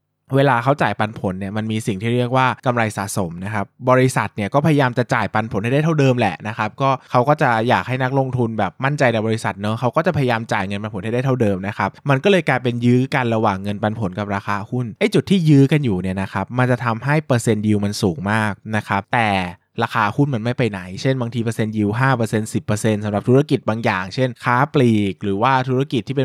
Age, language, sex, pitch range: 20-39, Thai, male, 100-130 Hz